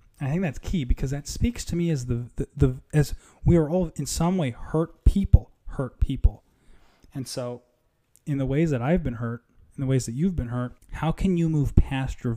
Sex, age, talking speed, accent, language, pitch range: male, 20-39, 225 wpm, American, English, 120-150 Hz